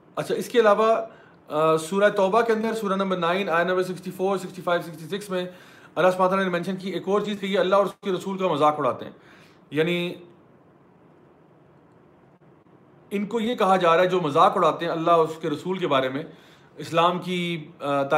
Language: English